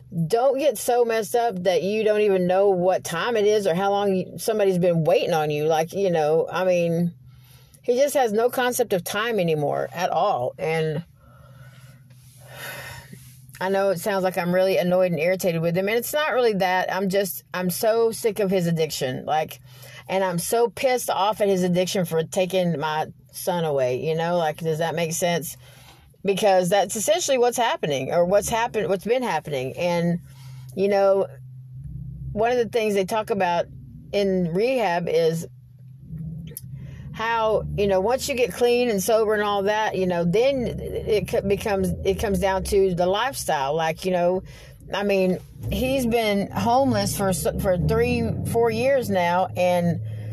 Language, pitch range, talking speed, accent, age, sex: English, 155-210 Hz, 175 wpm, American, 30-49, female